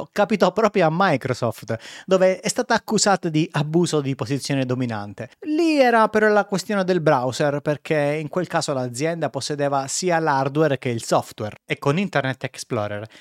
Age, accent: 30-49, native